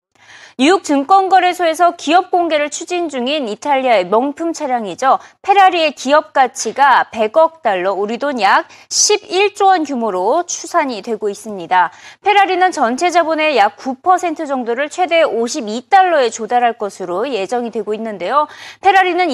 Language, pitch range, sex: Korean, 230-340 Hz, female